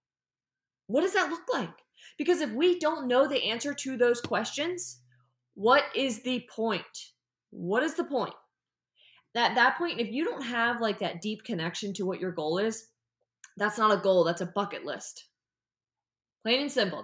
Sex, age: female, 20-39